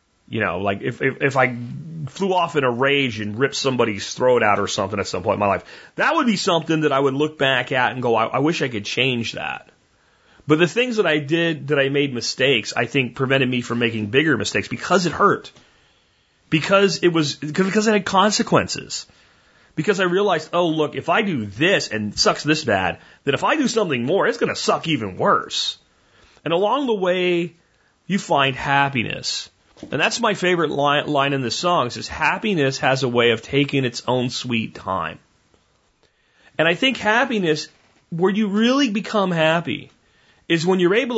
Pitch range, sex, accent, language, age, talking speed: 125-180 Hz, male, American, English, 30-49, 200 wpm